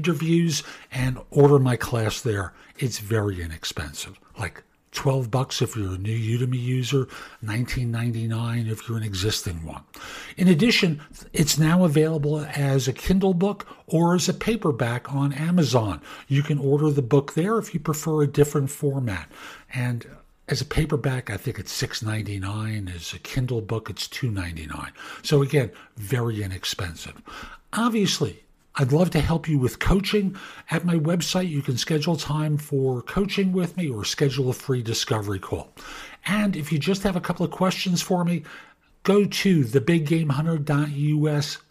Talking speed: 155 wpm